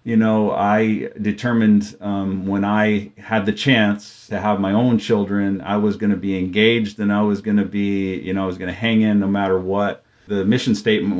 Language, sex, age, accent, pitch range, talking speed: English, male, 40-59, American, 100-115 Hz, 220 wpm